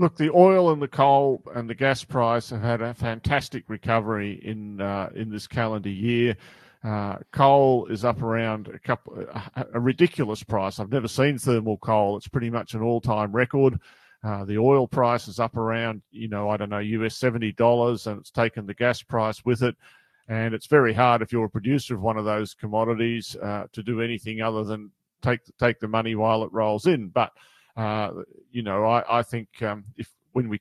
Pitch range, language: 105-120 Hz, English